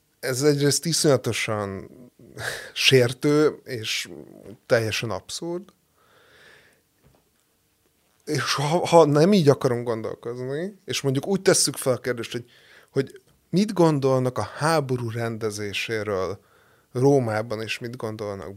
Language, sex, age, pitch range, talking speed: Hungarian, male, 20-39, 115-150 Hz, 105 wpm